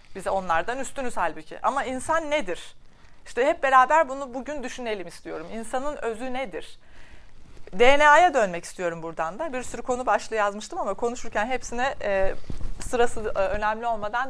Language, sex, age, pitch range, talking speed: Turkish, female, 40-59, 205-290 Hz, 140 wpm